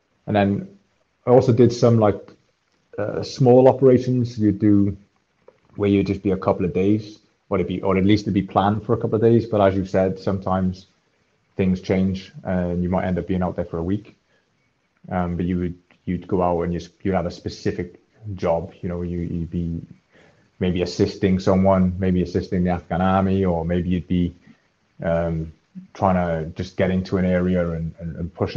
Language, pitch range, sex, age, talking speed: English, 90-100 Hz, male, 20-39, 200 wpm